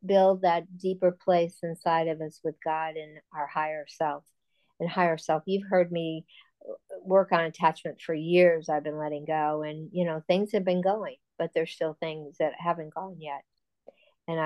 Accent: American